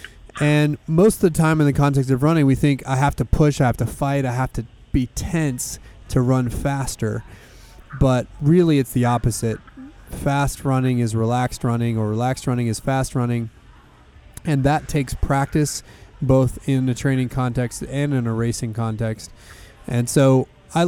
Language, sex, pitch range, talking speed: English, male, 120-140 Hz, 175 wpm